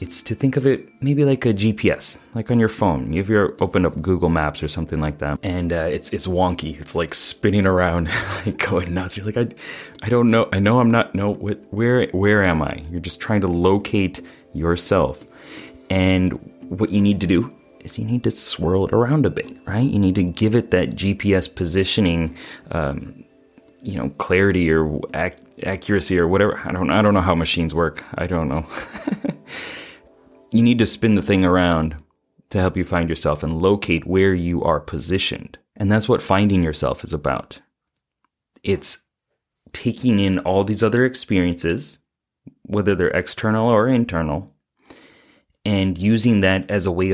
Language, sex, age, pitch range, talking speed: English, male, 30-49, 85-105 Hz, 180 wpm